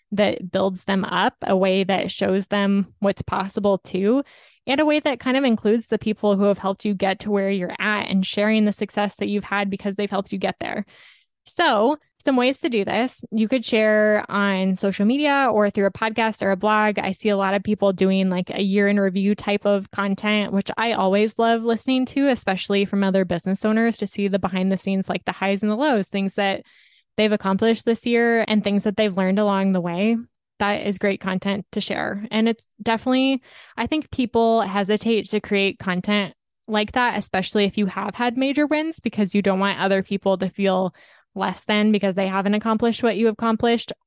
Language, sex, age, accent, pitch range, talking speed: English, female, 20-39, American, 195-225 Hz, 210 wpm